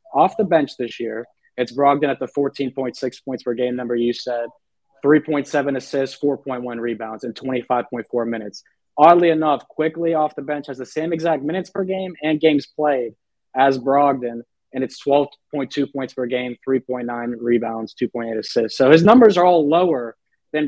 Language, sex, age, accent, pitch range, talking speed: English, male, 20-39, American, 125-150 Hz, 170 wpm